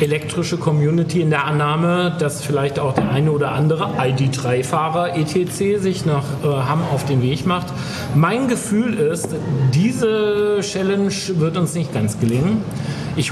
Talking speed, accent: 150 wpm, German